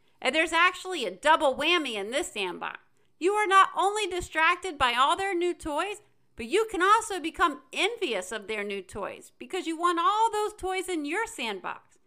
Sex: female